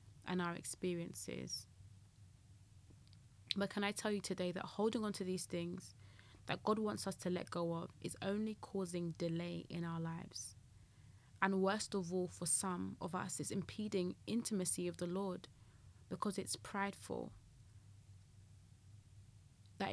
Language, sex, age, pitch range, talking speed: English, female, 20-39, 115-190 Hz, 145 wpm